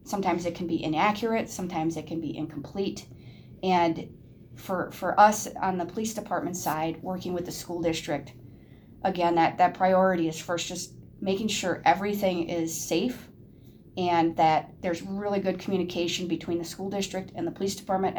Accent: American